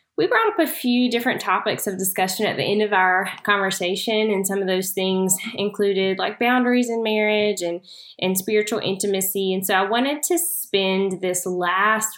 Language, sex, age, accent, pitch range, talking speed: English, female, 10-29, American, 180-225 Hz, 180 wpm